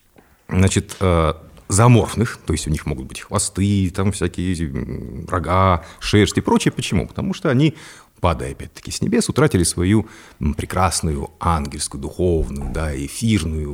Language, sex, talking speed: Russian, male, 130 wpm